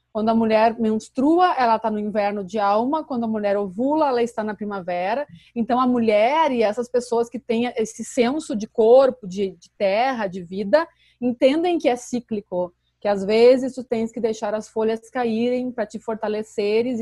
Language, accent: Portuguese, Brazilian